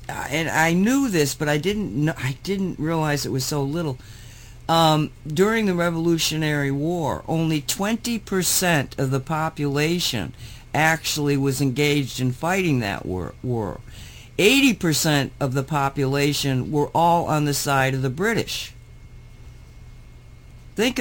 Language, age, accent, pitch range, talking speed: English, 60-79, American, 130-170 Hz, 135 wpm